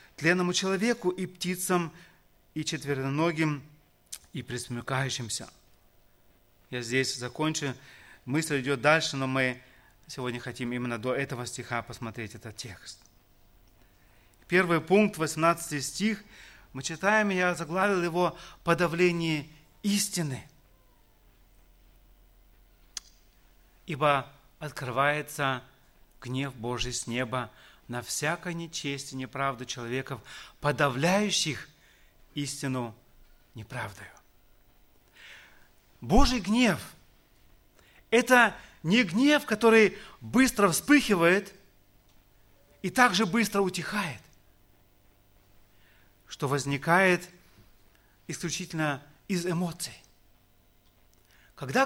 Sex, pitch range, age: male, 120-180 Hz, 30-49